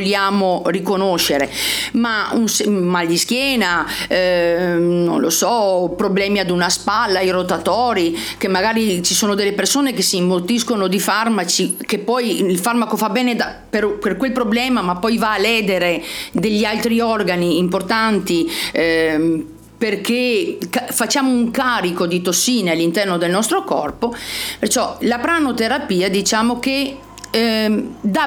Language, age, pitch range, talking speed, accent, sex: Italian, 40-59, 180-250 Hz, 140 wpm, native, female